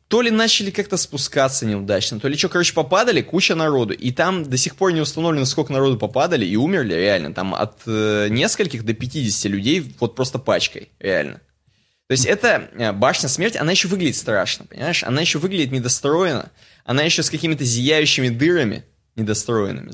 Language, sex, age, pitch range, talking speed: Russian, male, 20-39, 115-165 Hz, 180 wpm